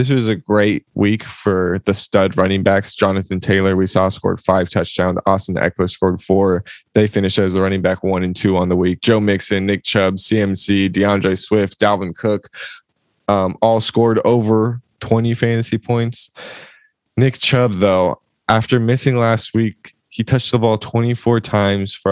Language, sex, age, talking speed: English, male, 20-39, 170 wpm